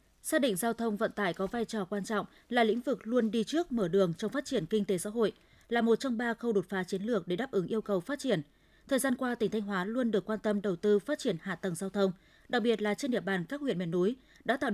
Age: 20-39